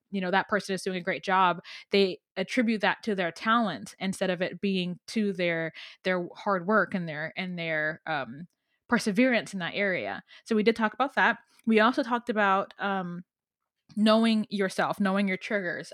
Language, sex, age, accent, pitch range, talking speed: English, female, 20-39, American, 185-230 Hz, 185 wpm